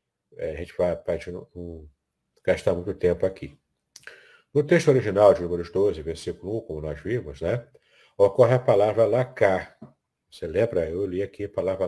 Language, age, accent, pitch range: Portuguese, 60-79, Brazilian, 90-145 Hz